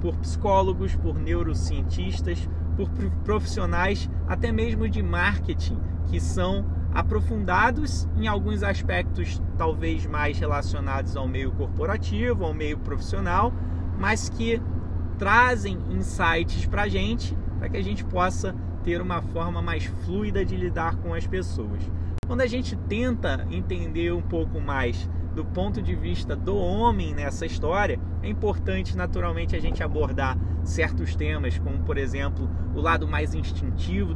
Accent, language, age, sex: Brazilian, Portuguese, 20-39, male